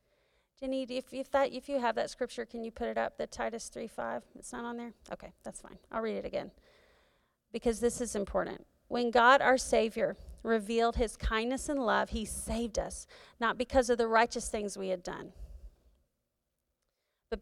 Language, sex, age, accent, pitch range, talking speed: English, female, 30-49, American, 205-250 Hz, 185 wpm